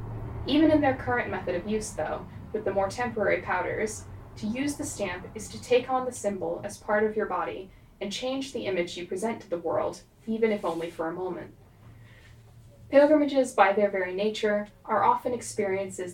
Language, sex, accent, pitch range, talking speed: English, female, American, 175-225 Hz, 190 wpm